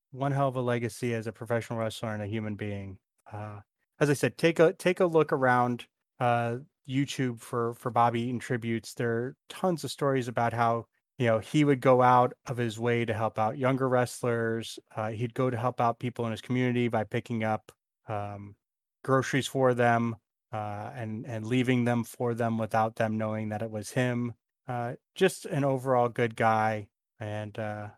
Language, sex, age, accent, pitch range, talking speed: English, male, 30-49, American, 115-130 Hz, 190 wpm